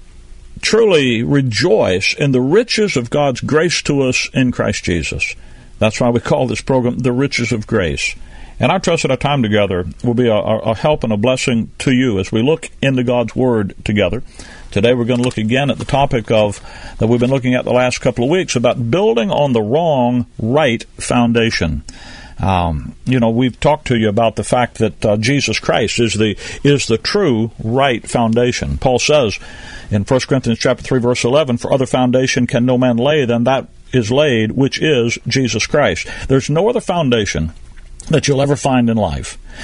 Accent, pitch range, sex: American, 110-135 Hz, male